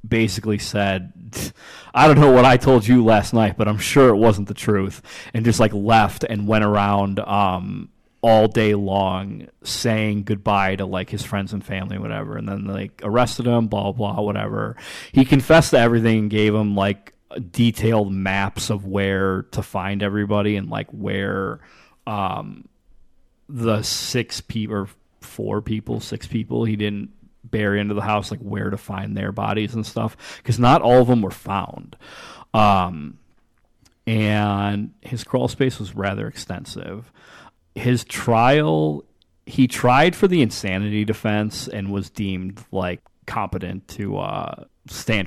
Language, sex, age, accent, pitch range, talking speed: English, male, 30-49, American, 100-115 Hz, 155 wpm